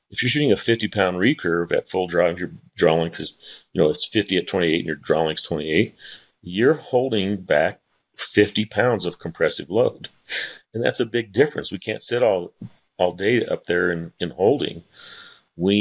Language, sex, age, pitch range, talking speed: English, male, 40-59, 85-105 Hz, 185 wpm